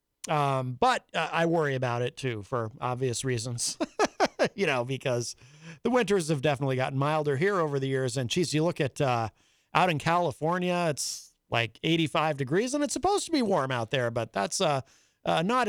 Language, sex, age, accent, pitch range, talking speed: English, male, 40-59, American, 140-200 Hz, 190 wpm